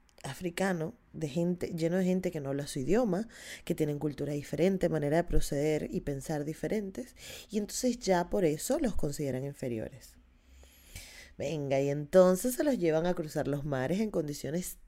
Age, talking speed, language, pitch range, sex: 20-39, 165 wpm, Spanish, 145-195 Hz, female